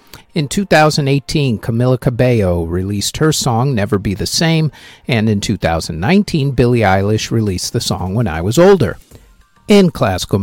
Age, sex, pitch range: 50-69, male, 105-155 Hz